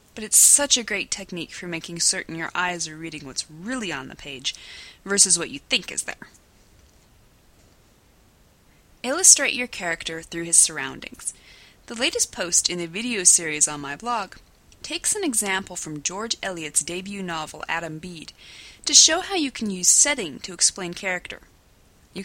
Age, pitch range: 20-39, 165-250 Hz